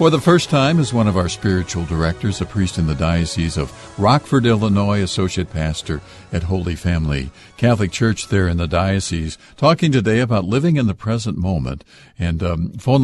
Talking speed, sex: 185 wpm, male